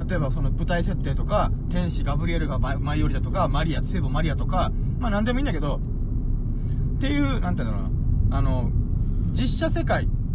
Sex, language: male, Japanese